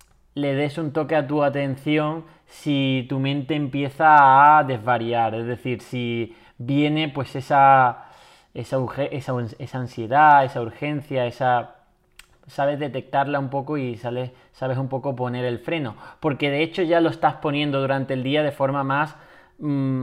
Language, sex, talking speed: Spanish, male, 155 wpm